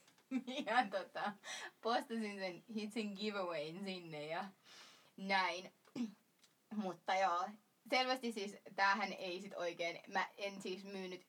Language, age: Finnish, 20-39